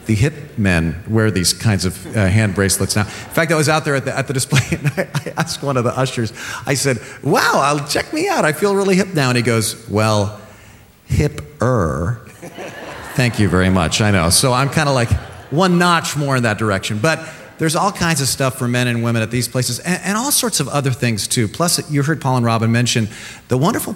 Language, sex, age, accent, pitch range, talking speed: English, male, 40-59, American, 115-150 Hz, 230 wpm